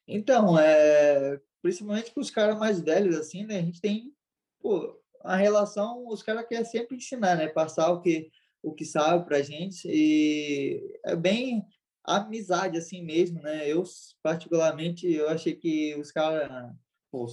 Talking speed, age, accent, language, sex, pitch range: 150 wpm, 20-39, Brazilian, Portuguese, male, 155-190 Hz